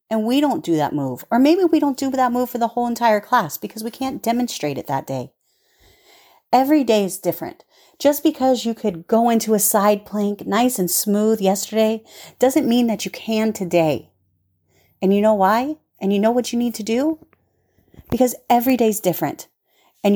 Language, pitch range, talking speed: English, 180-245 Hz, 195 wpm